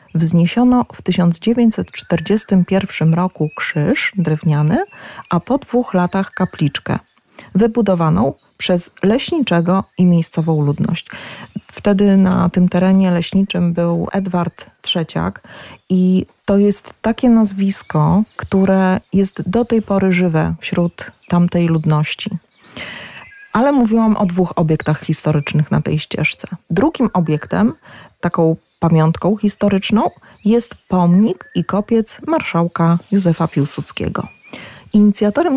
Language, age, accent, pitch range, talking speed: Polish, 30-49, native, 170-210 Hz, 105 wpm